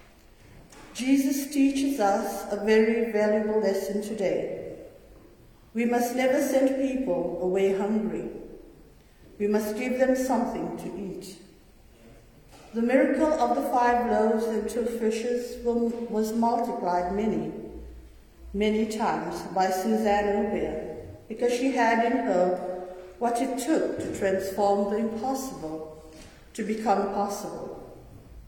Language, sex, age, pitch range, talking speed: English, female, 50-69, 190-255 Hz, 115 wpm